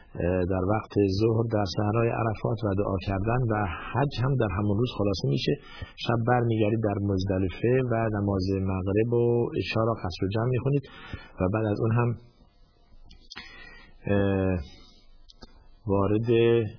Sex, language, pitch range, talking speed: male, Persian, 95-110 Hz, 125 wpm